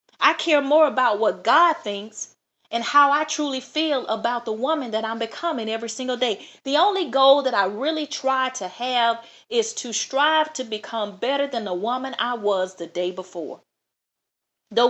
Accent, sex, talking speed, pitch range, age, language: American, female, 180 wpm, 190-260 Hz, 40-59, English